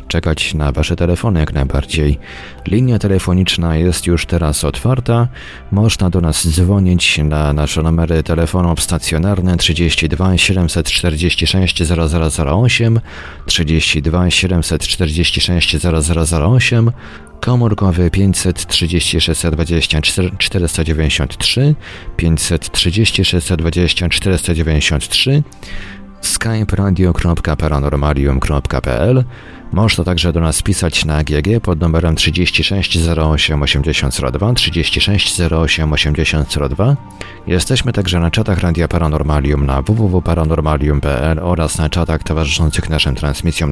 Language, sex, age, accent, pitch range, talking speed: Polish, male, 40-59, native, 80-95 Hz, 80 wpm